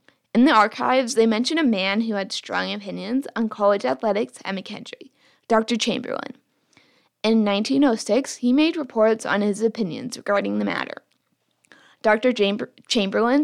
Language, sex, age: English, female, 10-29